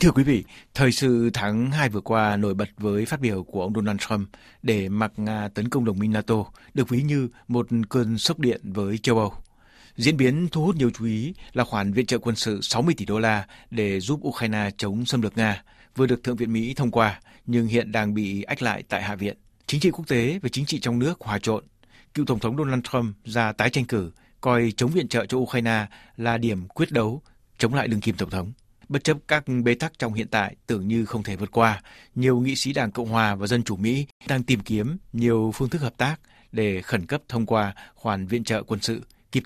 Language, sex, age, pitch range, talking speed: Vietnamese, male, 60-79, 105-125 Hz, 235 wpm